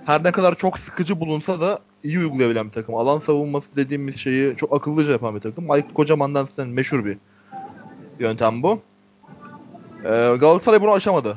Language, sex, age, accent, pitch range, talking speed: Turkish, male, 20-39, native, 140-190 Hz, 160 wpm